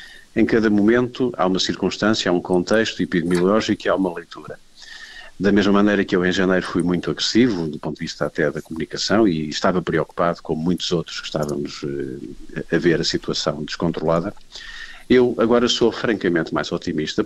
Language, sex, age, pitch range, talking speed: Portuguese, male, 50-69, 90-110 Hz, 175 wpm